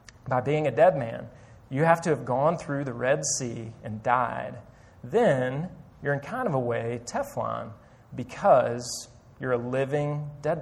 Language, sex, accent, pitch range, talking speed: English, male, American, 115-145 Hz, 165 wpm